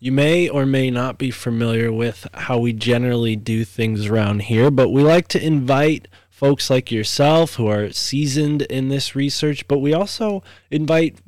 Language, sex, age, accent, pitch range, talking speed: English, male, 20-39, American, 105-130 Hz, 175 wpm